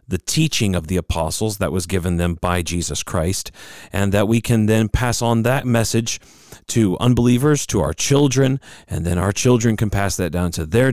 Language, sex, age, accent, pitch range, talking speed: English, male, 40-59, American, 90-120 Hz, 200 wpm